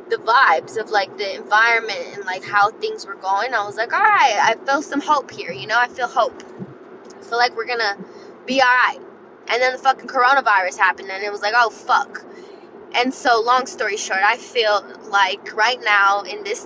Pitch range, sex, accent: 240-390 Hz, female, American